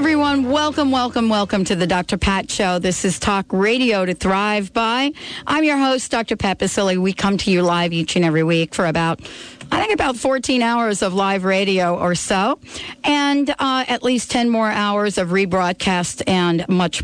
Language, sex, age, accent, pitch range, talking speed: English, female, 50-69, American, 190-240 Hz, 190 wpm